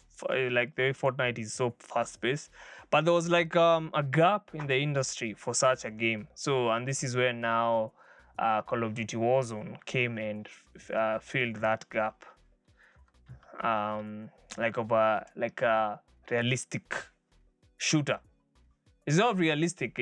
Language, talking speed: English, 150 wpm